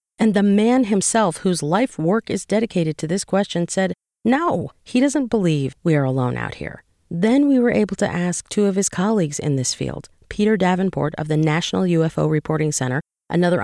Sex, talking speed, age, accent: female, 195 wpm, 40-59, American